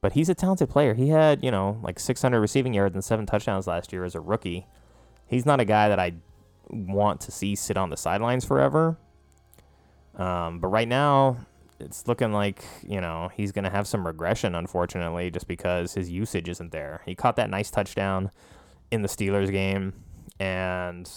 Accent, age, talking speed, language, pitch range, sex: American, 20-39, 190 wpm, English, 85-110 Hz, male